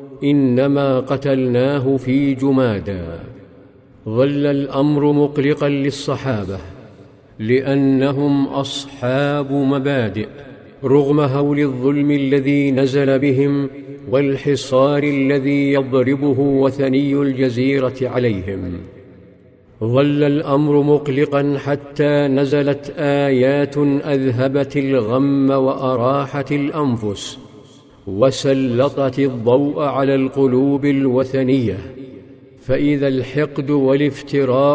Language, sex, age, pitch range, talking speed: Arabic, male, 50-69, 130-140 Hz, 70 wpm